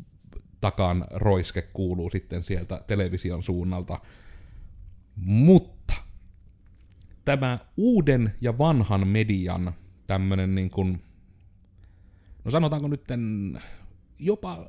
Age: 30-49